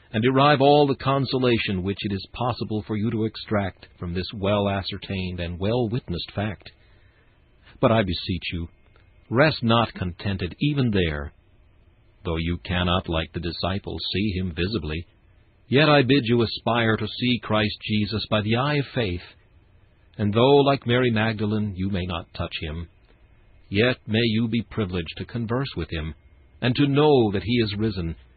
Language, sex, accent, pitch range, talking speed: English, male, American, 90-120 Hz, 165 wpm